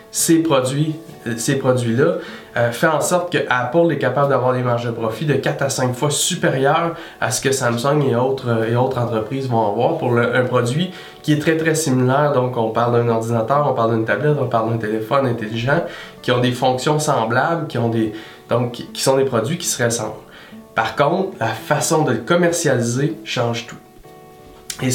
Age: 20-39